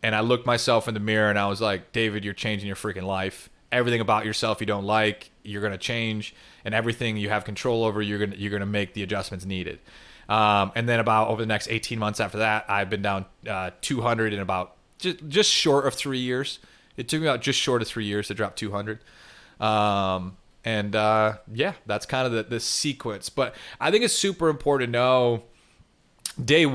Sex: male